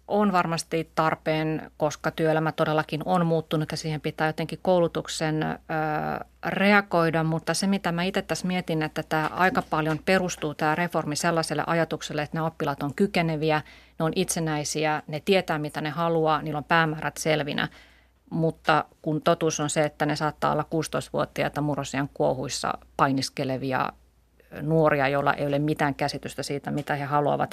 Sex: female